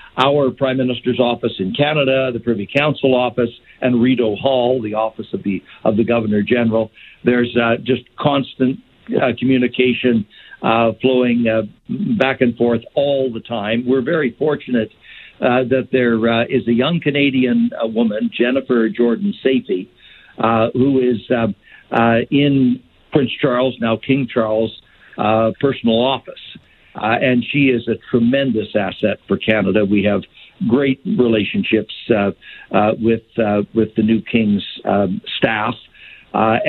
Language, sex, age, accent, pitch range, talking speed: English, male, 60-79, American, 115-135 Hz, 145 wpm